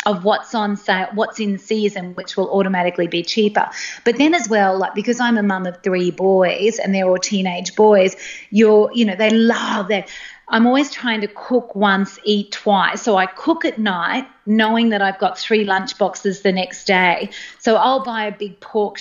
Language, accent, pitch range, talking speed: English, Australian, 190-225 Hz, 200 wpm